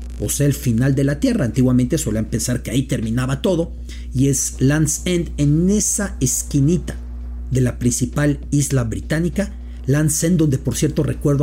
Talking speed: 170 wpm